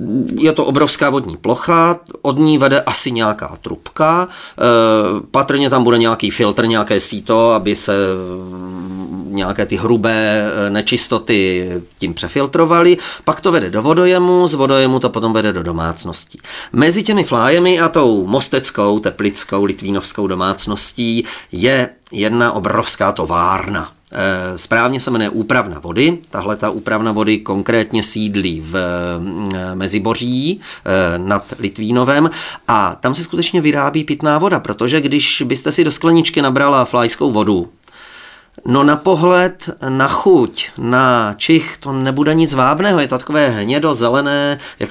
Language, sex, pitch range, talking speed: Czech, male, 100-145 Hz, 130 wpm